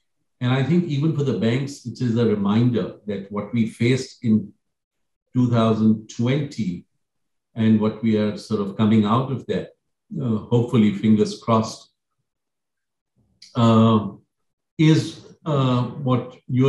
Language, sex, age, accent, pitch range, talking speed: English, male, 50-69, Indian, 110-125 Hz, 130 wpm